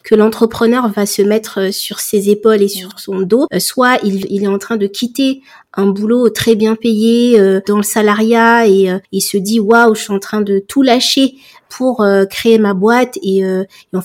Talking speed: 205 wpm